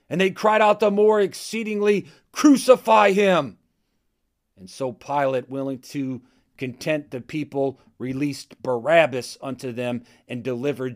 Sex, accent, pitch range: male, American, 110-135 Hz